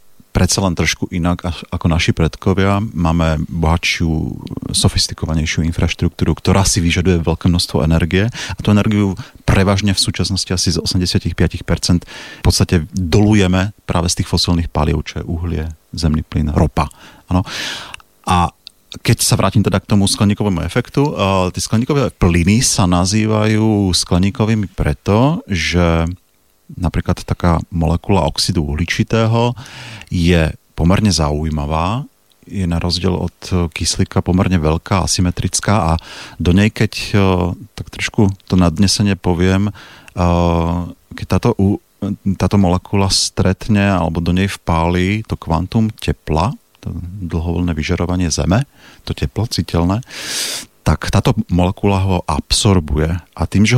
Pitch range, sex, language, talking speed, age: 85-105 Hz, male, Slovak, 120 wpm, 40-59